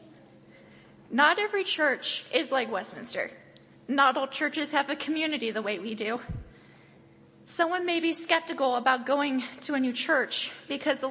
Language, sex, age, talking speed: English, female, 20-39, 150 wpm